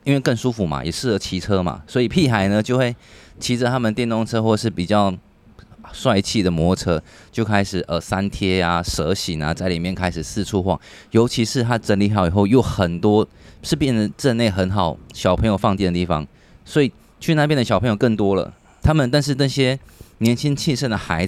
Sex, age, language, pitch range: male, 20-39, Chinese, 90-115 Hz